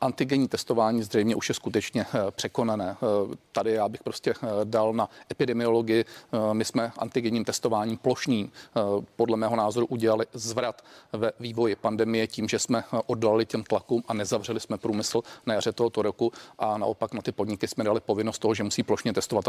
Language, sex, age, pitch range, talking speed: Czech, male, 40-59, 110-130 Hz, 165 wpm